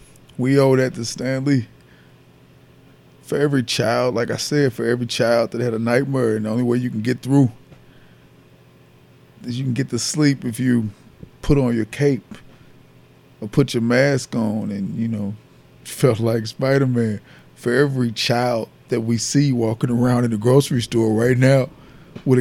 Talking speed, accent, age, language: 175 wpm, American, 20-39, English